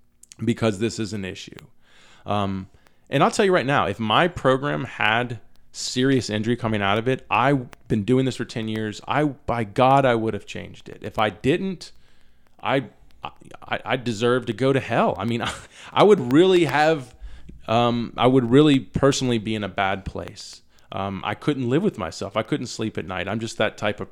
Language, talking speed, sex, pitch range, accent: English, 200 wpm, male, 105-135 Hz, American